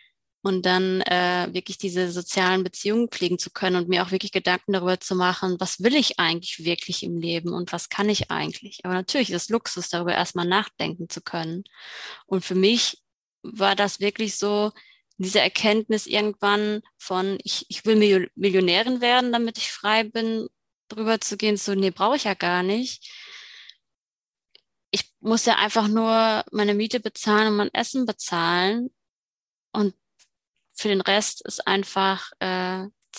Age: 20-39